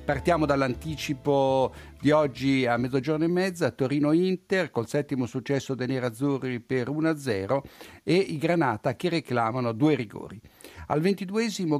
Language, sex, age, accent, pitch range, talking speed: Italian, male, 60-79, native, 125-165 Hz, 125 wpm